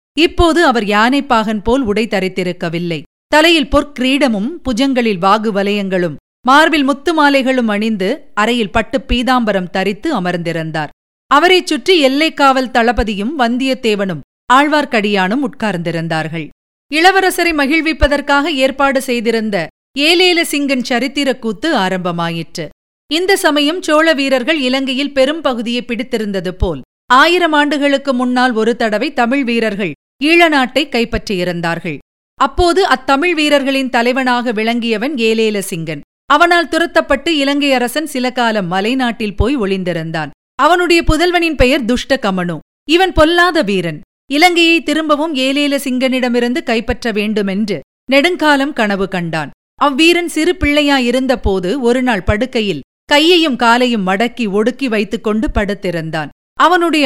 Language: Tamil